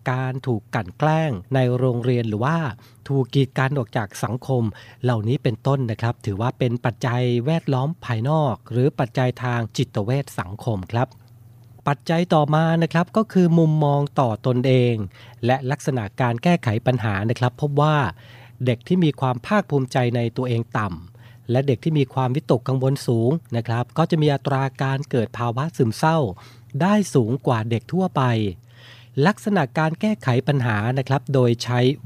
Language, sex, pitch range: Thai, male, 120-150 Hz